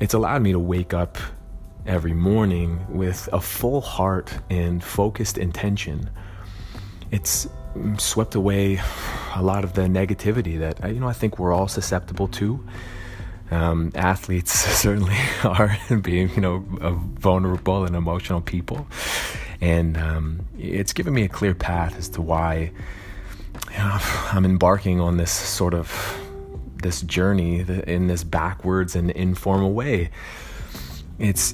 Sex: male